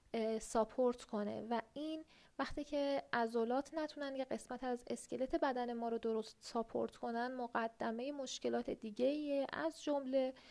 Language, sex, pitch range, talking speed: Persian, female, 235-290 Hz, 130 wpm